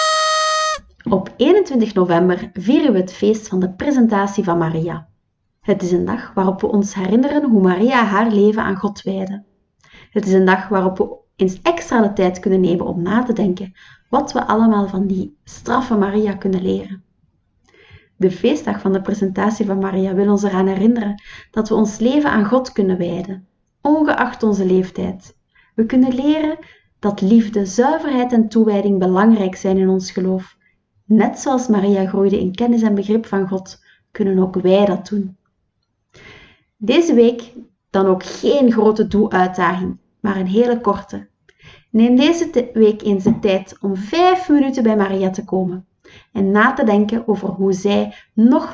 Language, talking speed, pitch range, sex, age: Dutch, 165 wpm, 190-230 Hz, female, 30-49